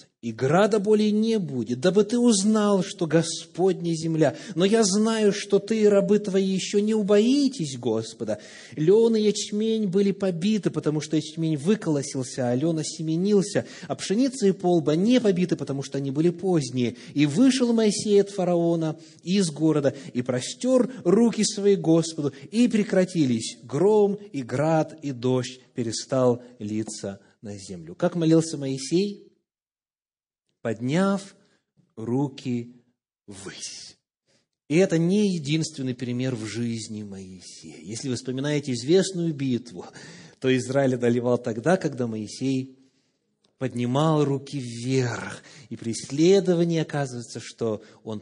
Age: 30-49